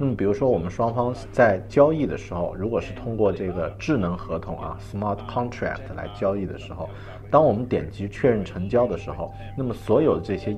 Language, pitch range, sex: Chinese, 90-105 Hz, male